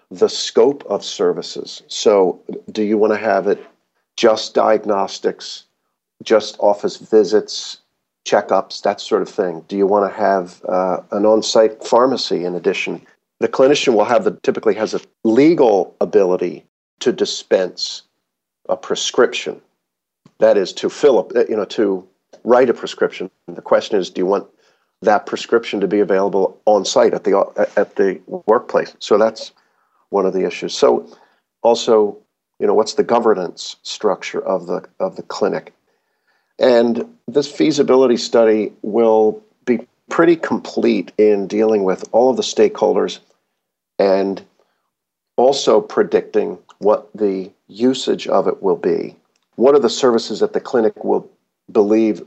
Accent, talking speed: American, 145 wpm